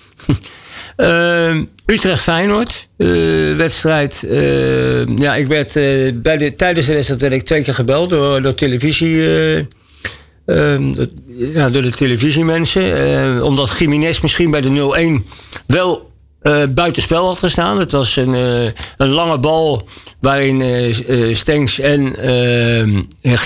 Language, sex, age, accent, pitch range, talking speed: Dutch, male, 60-79, Dutch, 120-155 Hz, 135 wpm